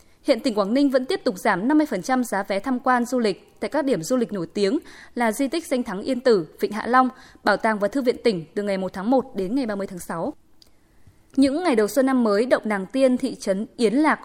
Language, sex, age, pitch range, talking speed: Vietnamese, female, 20-39, 210-280 Hz, 255 wpm